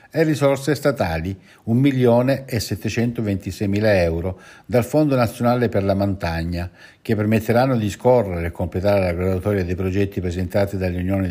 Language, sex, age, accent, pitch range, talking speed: Italian, male, 60-79, native, 95-120 Hz, 120 wpm